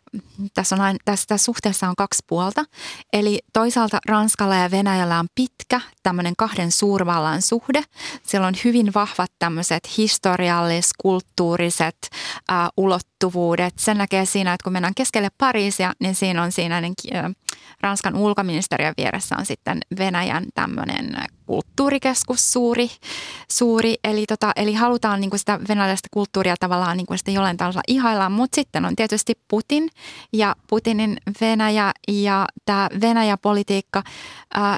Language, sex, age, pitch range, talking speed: Finnish, female, 20-39, 185-215 Hz, 125 wpm